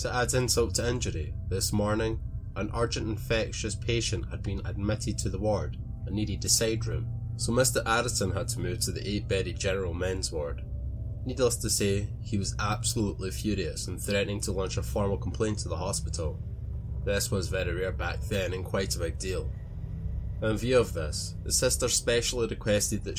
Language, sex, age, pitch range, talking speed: English, male, 20-39, 90-110 Hz, 185 wpm